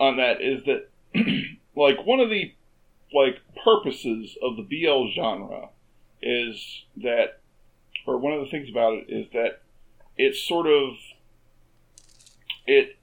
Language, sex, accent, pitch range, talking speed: English, male, American, 130-195 Hz, 135 wpm